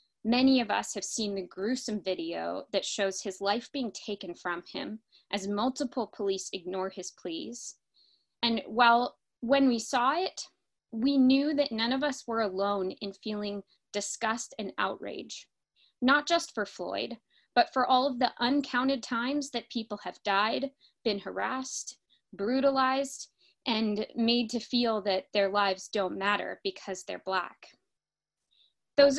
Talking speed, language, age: 150 wpm, English, 20-39